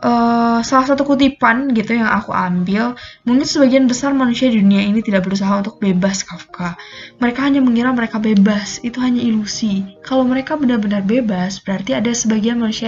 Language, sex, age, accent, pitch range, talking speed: Indonesian, female, 10-29, native, 205-260 Hz, 165 wpm